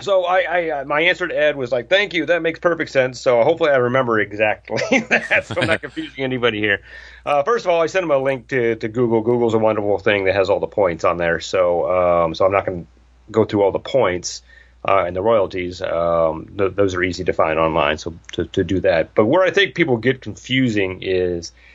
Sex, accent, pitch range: male, American, 90-135 Hz